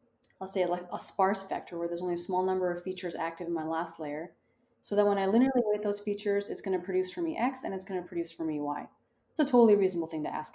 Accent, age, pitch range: American, 30-49, 165-205 Hz